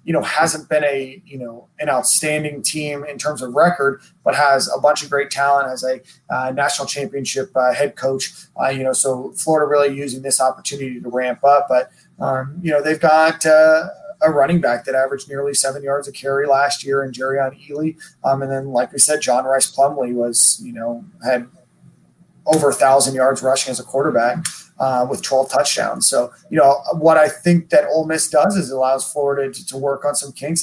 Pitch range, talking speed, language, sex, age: 130-150 Hz, 210 wpm, English, male, 30-49